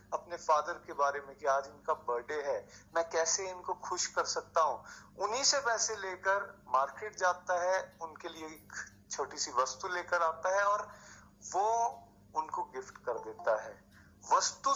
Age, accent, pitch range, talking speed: 30-49, native, 150-225 Hz, 165 wpm